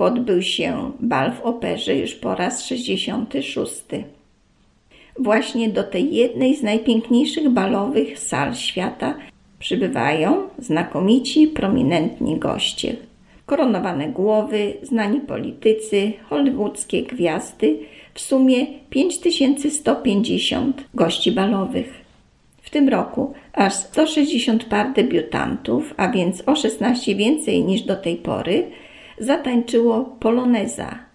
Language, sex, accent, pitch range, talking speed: German, female, Polish, 205-275 Hz, 100 wpm